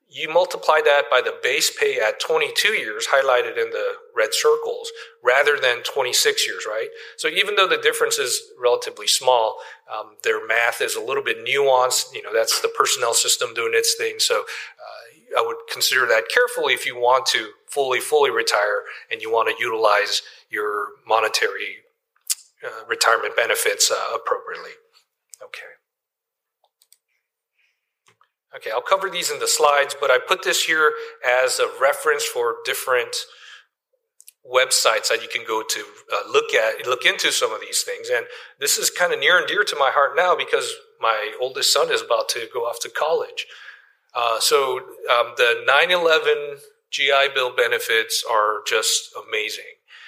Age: 40-59